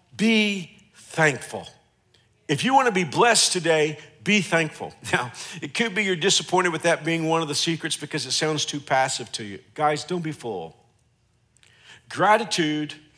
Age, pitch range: 50-69, 145-195 Hz